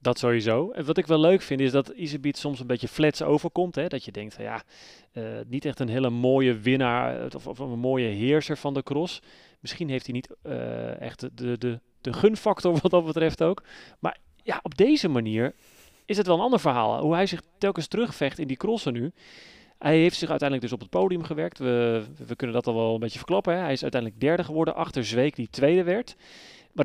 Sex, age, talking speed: male, 30-49, 220 wpm